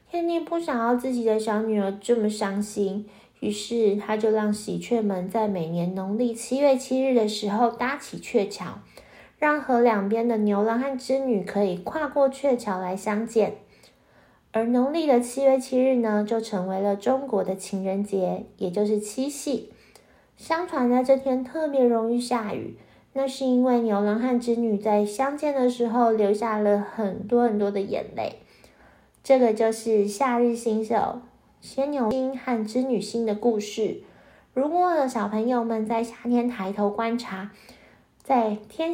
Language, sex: Chinese, female